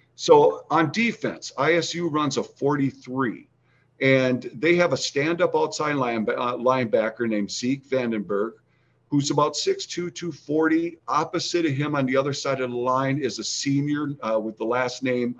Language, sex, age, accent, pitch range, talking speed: English, male, 50-69, American, 125-160 Hz, 155 wpm